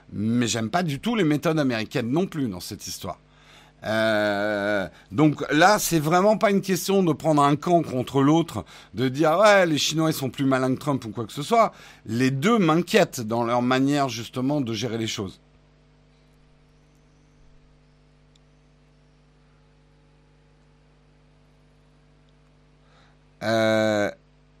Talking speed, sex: 130 wpm, male